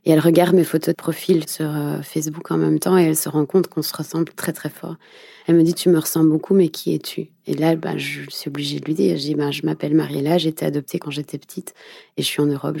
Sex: female